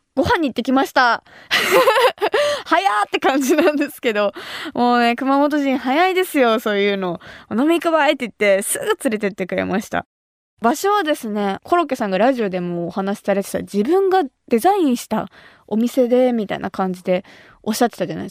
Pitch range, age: 220-315 Hz, 20-39